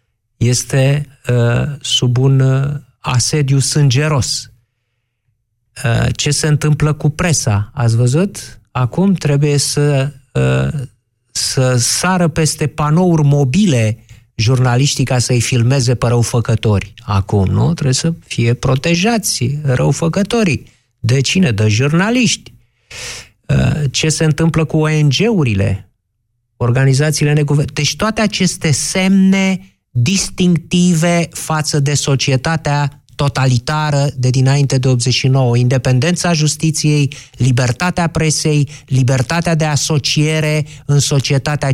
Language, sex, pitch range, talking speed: Romanian, male, 120-155 Hz, 100 wpm